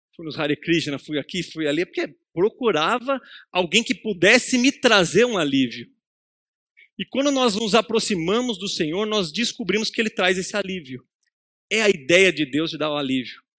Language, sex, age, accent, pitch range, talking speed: Portuguese, male, 40-59, Brazilian, 150-225 Hz, 180 wpm